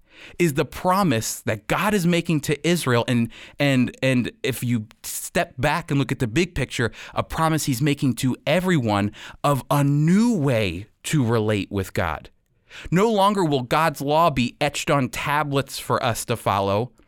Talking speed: 170 wpm